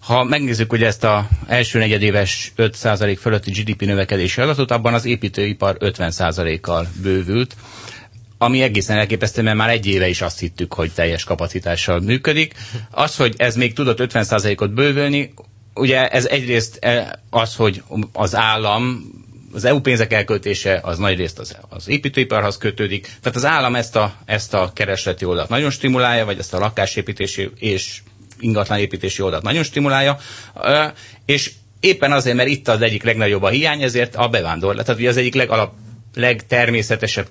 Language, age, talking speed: Hungarian, 30-49, 155 wpm